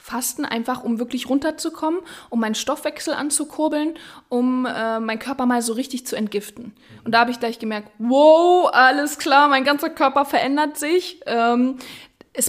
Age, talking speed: 20-39, 165 wpm